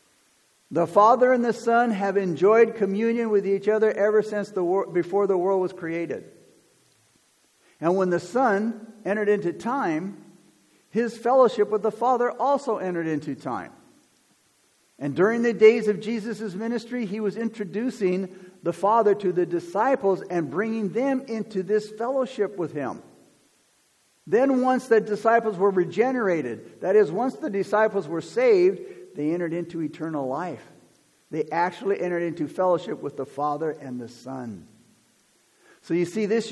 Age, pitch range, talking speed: 60-79, 175-225 Hz, 150 wpm